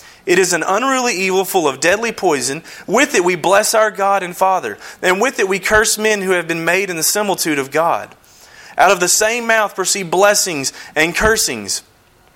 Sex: male